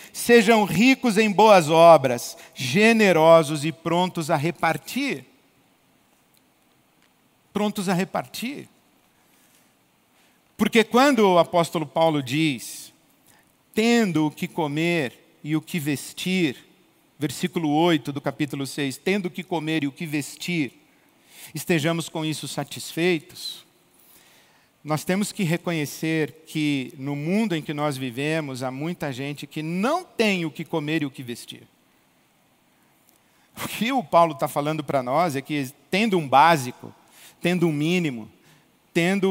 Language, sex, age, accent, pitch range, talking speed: Portuguese, male, 50-69, Brazilian, 150-180 Hz, 130 wpm